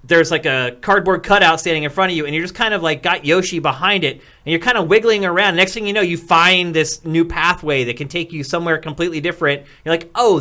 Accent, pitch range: American, 135-170 Hz